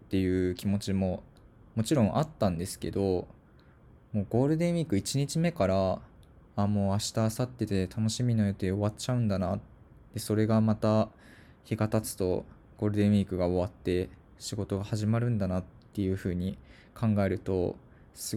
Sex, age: male, 20-39